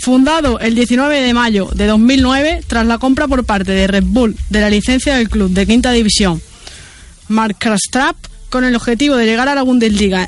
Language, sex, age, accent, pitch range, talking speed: Spanish, female, 20-39, Spanish, 220-265 Hz, 195 wpm